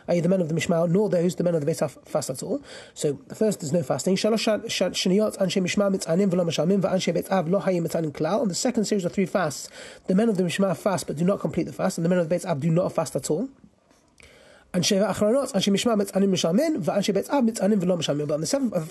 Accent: British